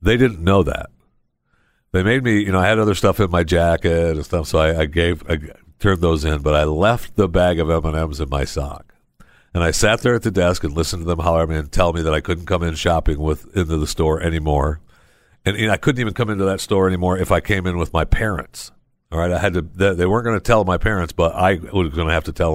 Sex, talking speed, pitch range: male, 265 wpm, 80-100 Hz